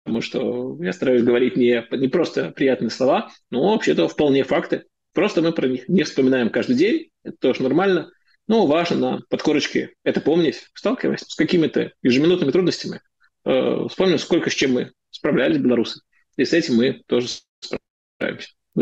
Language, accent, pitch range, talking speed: Russian, native, 125-180 Hz, 160 wpm